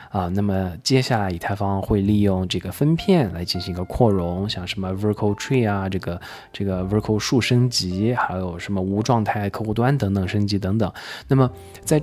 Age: 20-39